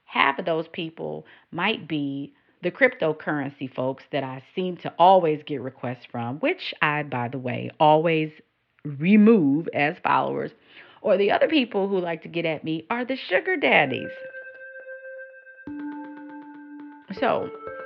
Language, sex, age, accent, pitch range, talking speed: English, female, 40-59, American, 155-235 Hz, 140 wpm